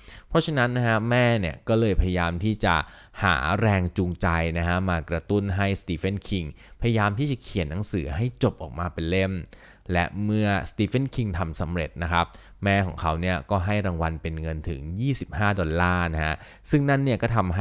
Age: 20-39